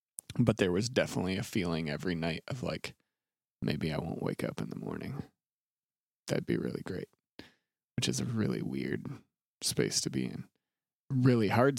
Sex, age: male, 30-49